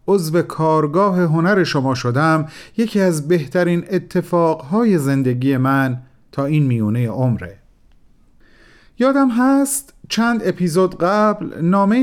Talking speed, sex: 105 wpm, male